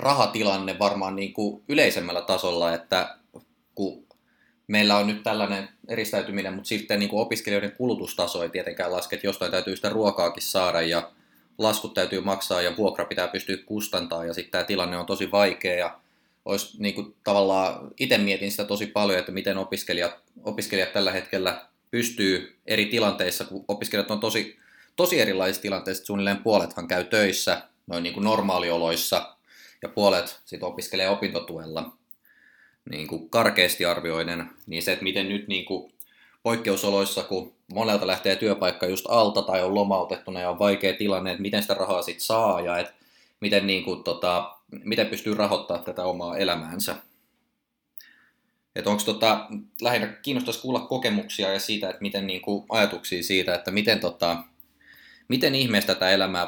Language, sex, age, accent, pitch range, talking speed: Finnish, male, 20-39, native, 90-105 Hz, 145 wpm